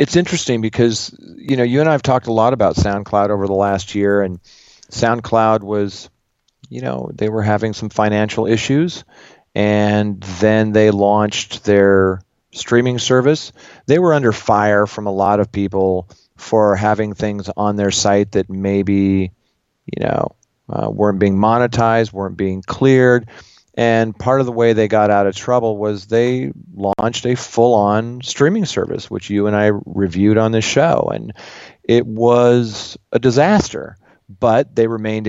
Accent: American